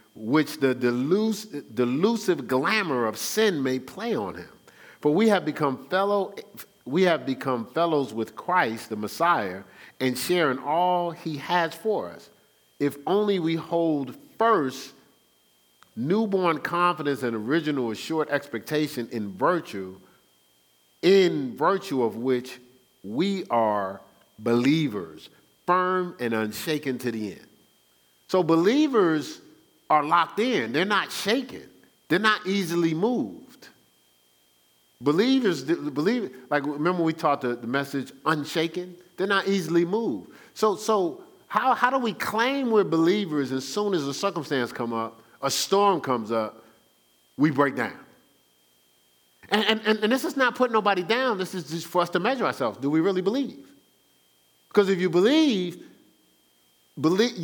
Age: 50-69